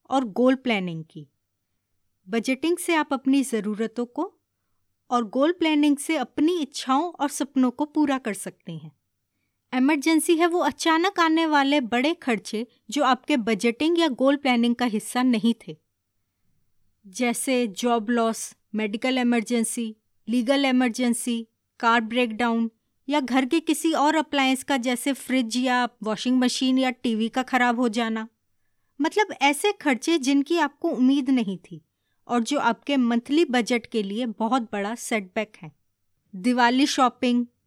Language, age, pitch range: Hindi, 20-39, 230-295 Hz